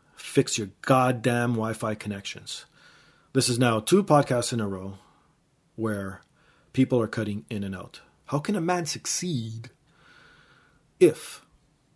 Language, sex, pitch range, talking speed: English, male, 105-130 Hz, 130 wpm